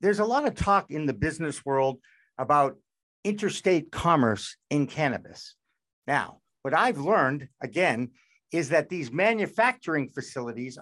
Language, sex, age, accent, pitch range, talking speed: English, male, 60-79, American, 145-200 Hz, 135 wpm